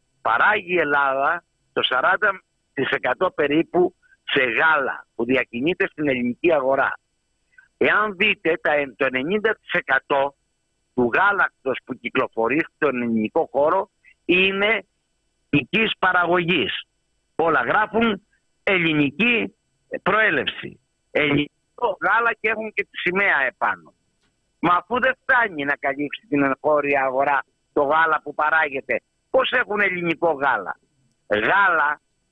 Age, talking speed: 60-79, 105 wpm